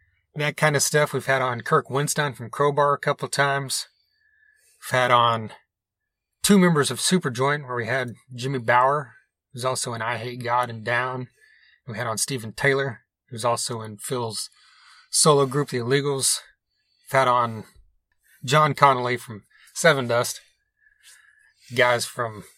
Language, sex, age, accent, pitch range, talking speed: English, male, 30-49, American, 120-145 Hz, 155 wpm